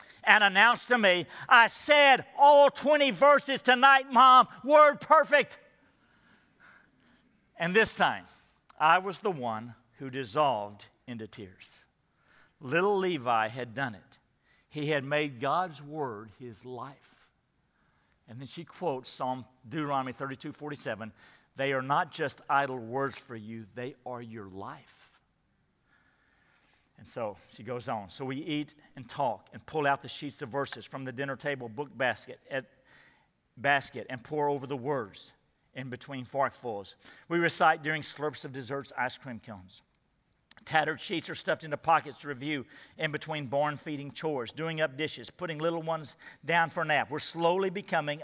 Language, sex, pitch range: English, male, 125-165 Hz